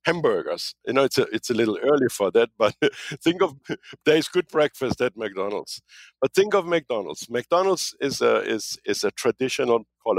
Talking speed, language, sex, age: 185 wpm, English, male, 60-79